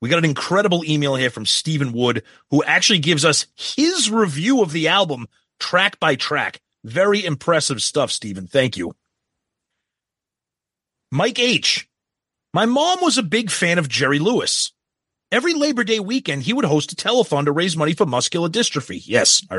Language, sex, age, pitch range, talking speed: English, male, 30-49, 145-210 Hz, 170 wpm